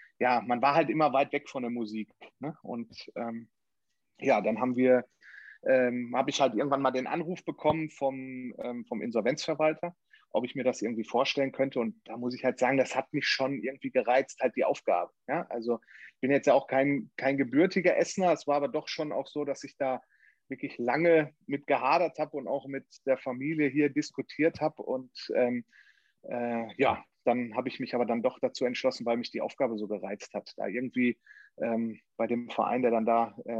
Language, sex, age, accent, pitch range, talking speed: German, male, 30-49, German, 120-140 Hz, 205 wpm